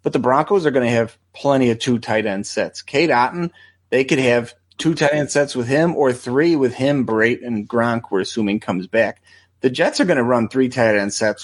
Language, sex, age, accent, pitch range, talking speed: English, male, 30-49, American, 110-135 Hz, 235 wpm